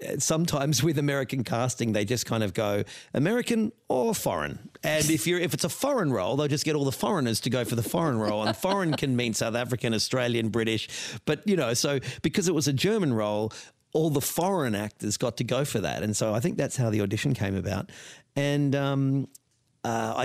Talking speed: 215 wpm